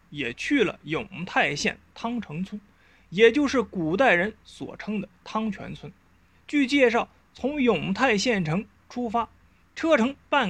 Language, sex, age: Chinese, male, 20-39